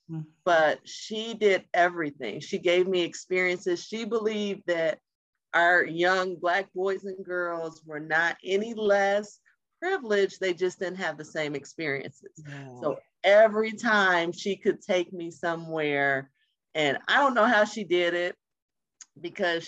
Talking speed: 140 wpm